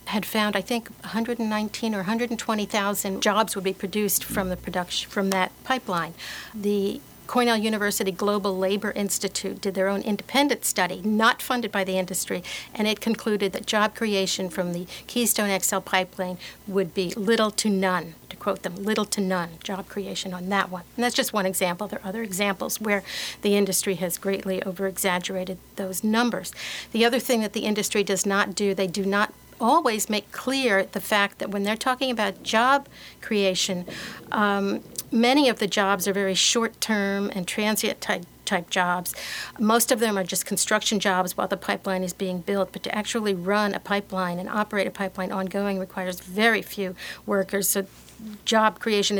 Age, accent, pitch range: 60-79, American, 190-215 Hz